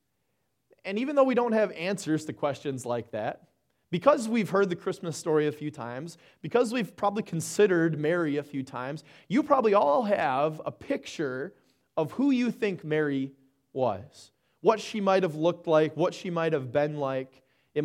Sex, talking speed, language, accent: male, 180 wpm, English, American